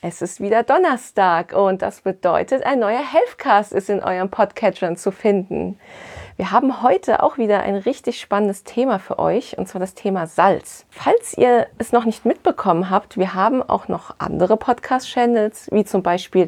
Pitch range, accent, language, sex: 195-235 Hz, German, German, female